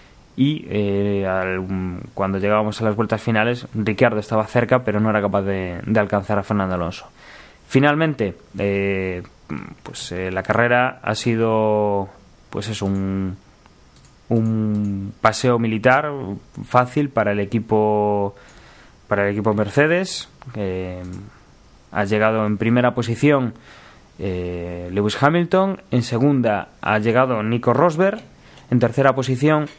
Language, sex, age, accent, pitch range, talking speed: Spanish, male, 20-39, Spanish, 105-130 Hz, 125 wpm